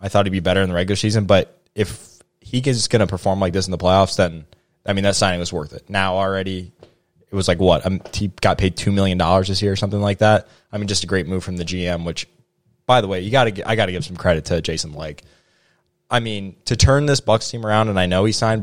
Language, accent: English, American